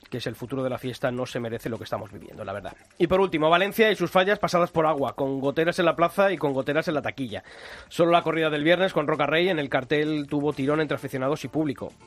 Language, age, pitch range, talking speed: Spanish, 30-49, 120-155 Hz, 270 wpm